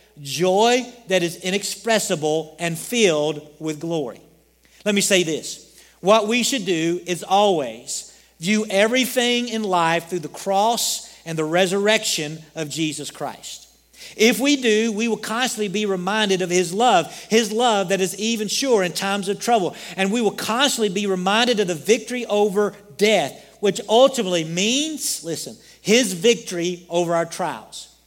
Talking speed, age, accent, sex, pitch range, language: 155 wpm, 40-59, American, male, 190-230 Hz, English